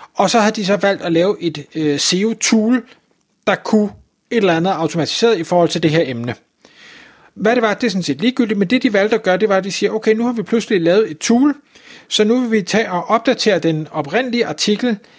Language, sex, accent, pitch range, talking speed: Danish, male, native, 165-220 Hz, 235 wpm